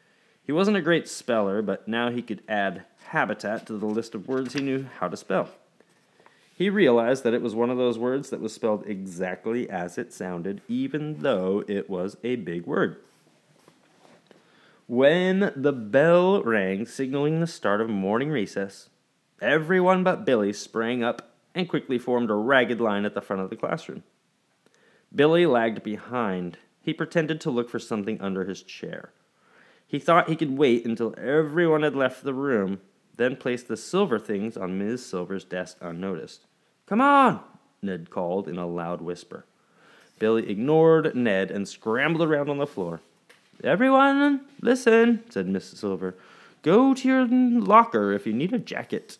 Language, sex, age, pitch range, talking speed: English, male, 30-49, 100-160 Hz, 165 wpm